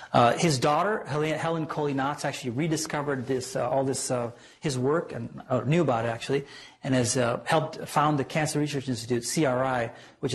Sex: male